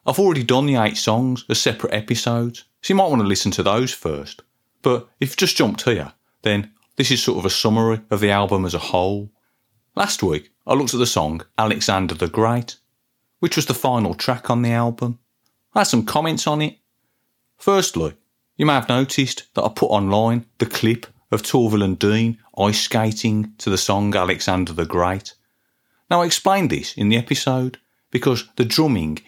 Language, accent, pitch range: English, British, 110-140 Hz